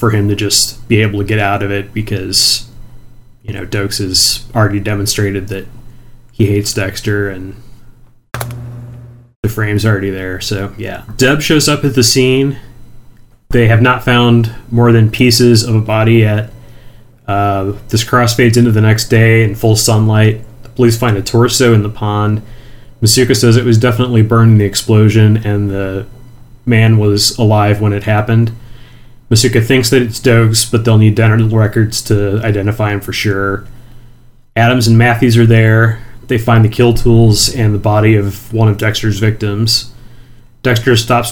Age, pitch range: 30-49, 105-120 Hz